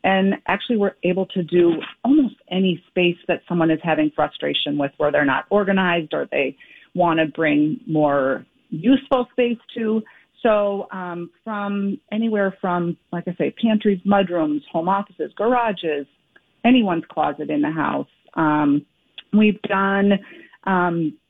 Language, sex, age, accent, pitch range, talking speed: English, female, 40-59, American, 160-200 Hz, 140 wpm